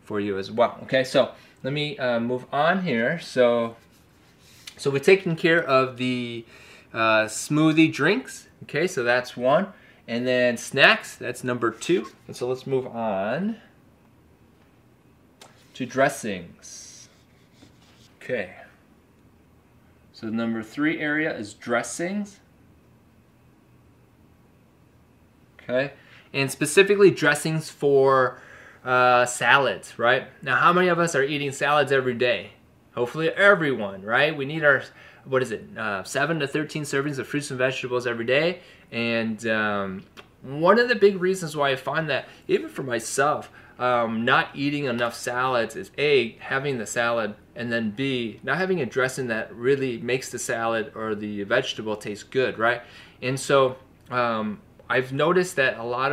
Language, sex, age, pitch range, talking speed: English, male, 20-39, 115-150 Hz, 145 wpm